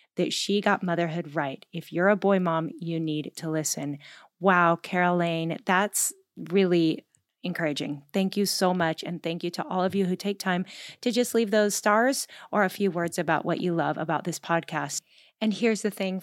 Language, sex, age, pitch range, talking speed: English, female, 30-49, 175-215 Hz, 195 wpm